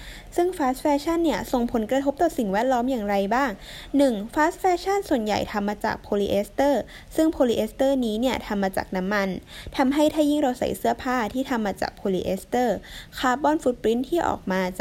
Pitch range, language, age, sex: 205-280 Hz, Thai, 10-29, female